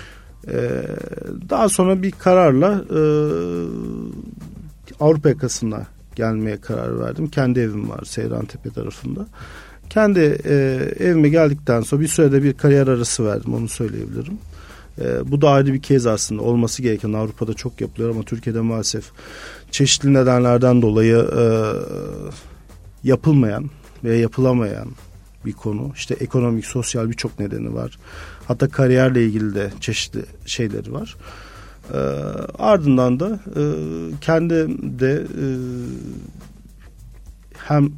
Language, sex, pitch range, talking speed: Turkish, male, 110-140 Hz, 115 wpm